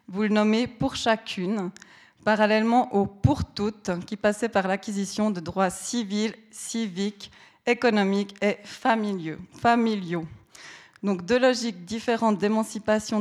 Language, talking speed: French, 130 wpm